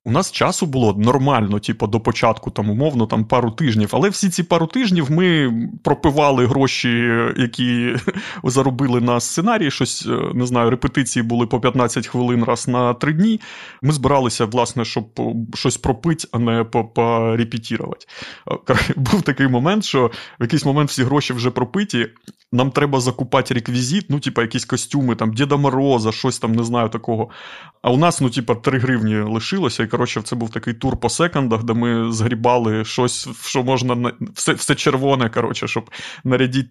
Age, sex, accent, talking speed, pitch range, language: 20-39, male, native, 165 wpm, 115-135 Hz, Ukrainian